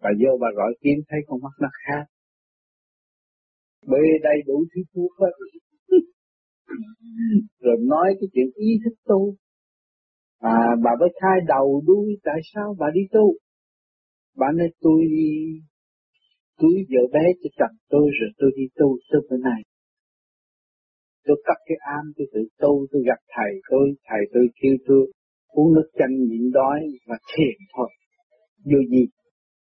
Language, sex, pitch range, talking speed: Vietnamese, male, 130-175 Hz, 150 wpm